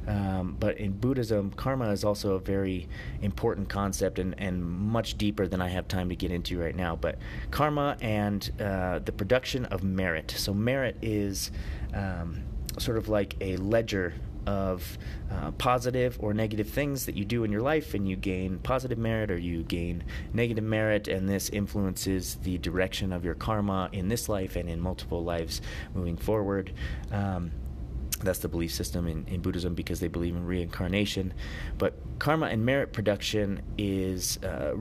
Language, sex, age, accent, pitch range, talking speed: English, male, 30-49, American, 90-105 Hz, 170 wpm